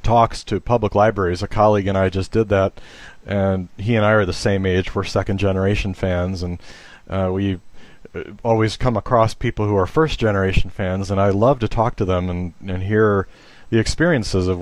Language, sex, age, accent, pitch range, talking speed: English, male, 40-59, American, 95-110 Hz, 190 wpm